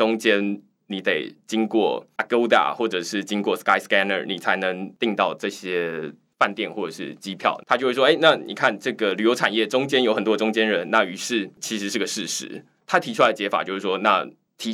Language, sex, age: Chinese, male, 20-39